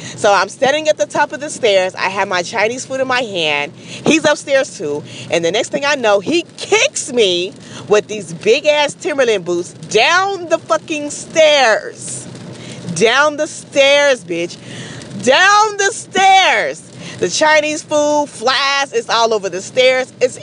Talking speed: 165 wpm